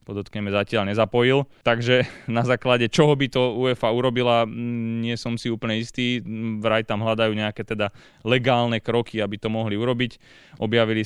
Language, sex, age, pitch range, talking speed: Slovak, male, 20-39, 105-120 Hz, 150 wpm